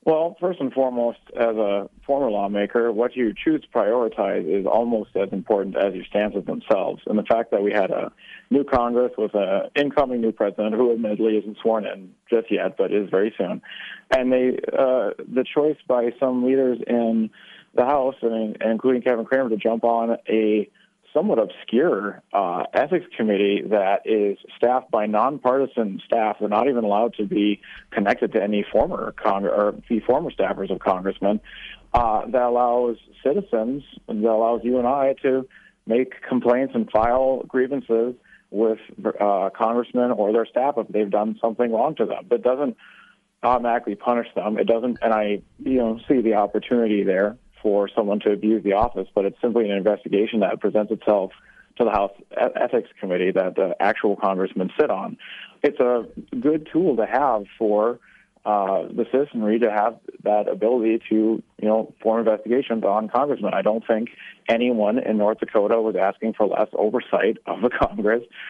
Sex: male